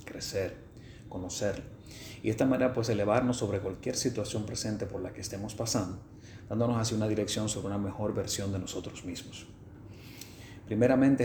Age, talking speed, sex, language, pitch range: 30-49, 155 wpm, male, Spanish, 100-120 Hz